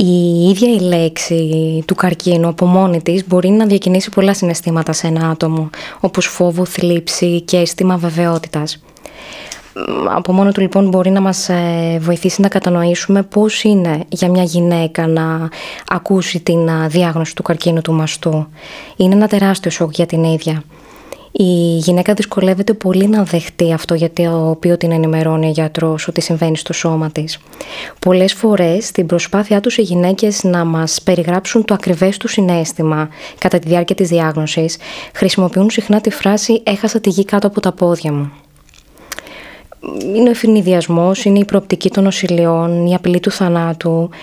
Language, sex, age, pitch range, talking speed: Greek, female, 20-39, 165-195 Hz, 155 wpm